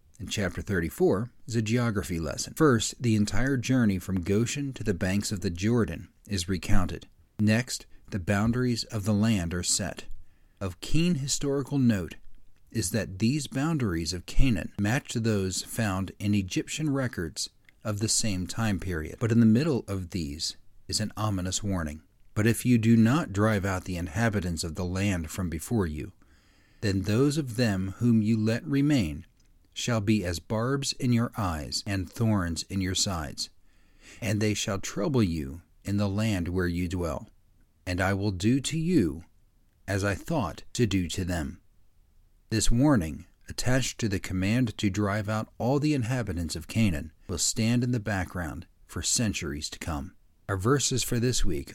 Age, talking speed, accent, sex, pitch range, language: 40-59, 170 wpm, American, male, 90-115 Hz, English